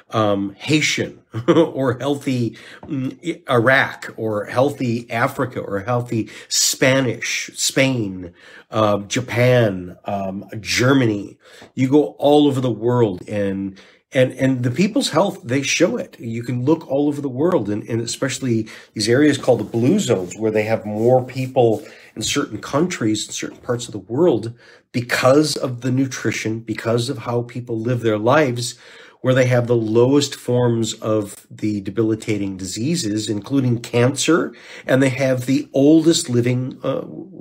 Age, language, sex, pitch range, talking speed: 40-59, English, male, 110-135 Hz, 150 wpm